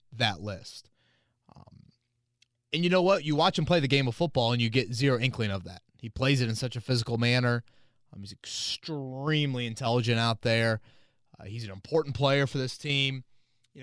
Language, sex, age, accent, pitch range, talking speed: English, male, 20-39, American, 115-135 Hz, 195 wpm